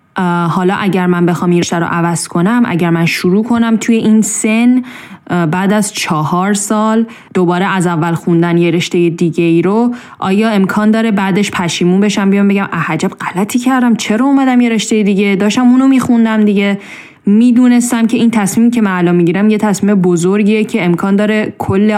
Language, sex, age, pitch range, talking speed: English, female, 10-29, 180-230 Hz, 180 wpm